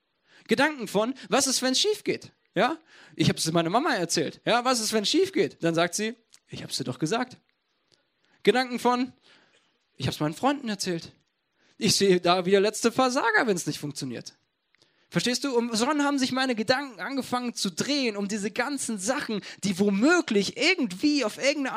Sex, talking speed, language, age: male, 190 wpm, German, 20-39